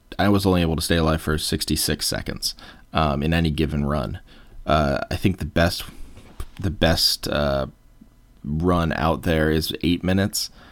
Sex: male